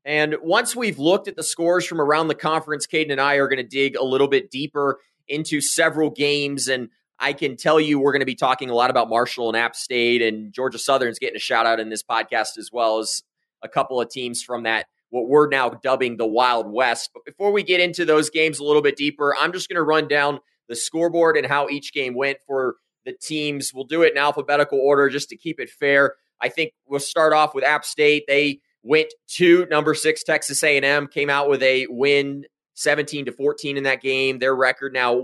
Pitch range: 130-155 Hz